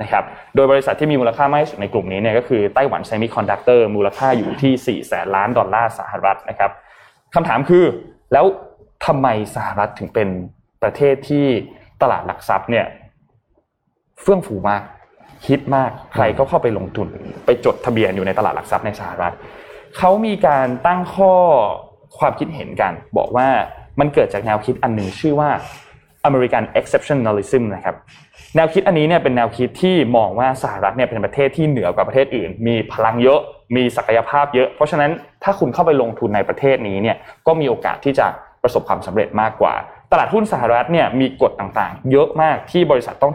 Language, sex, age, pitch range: Thai, male, 20-39, 110-150 Hz